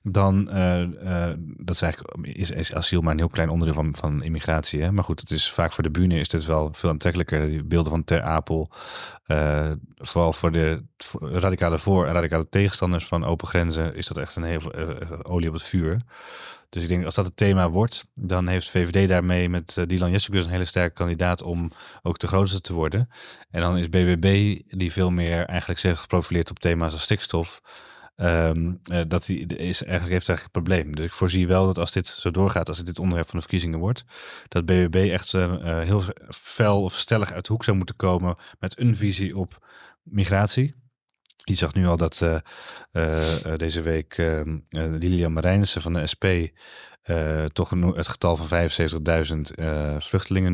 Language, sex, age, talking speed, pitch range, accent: Dutch, male, 30-49, 200 wpm, 80-95 Hz, Dutch